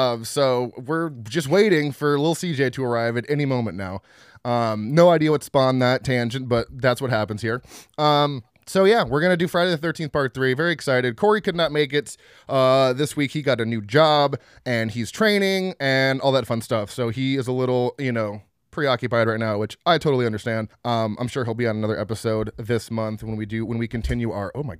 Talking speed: 225 wpm